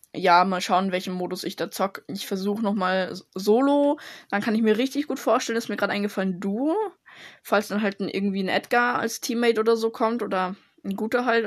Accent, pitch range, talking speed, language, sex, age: German, 180-205 Hz, 210 wpm, German, female, 10-29